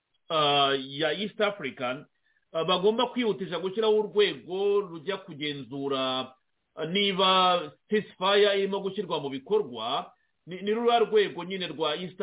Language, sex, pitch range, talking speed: English, male, 165-220 Hz, 125 wpm